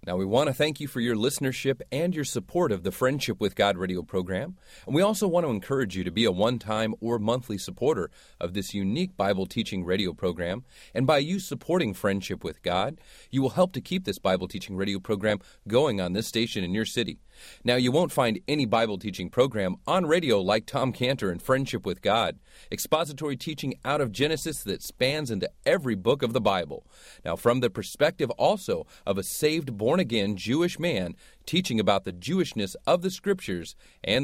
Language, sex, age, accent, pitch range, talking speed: English, male, 30-49, American, 100-145 Hz, 200 wpm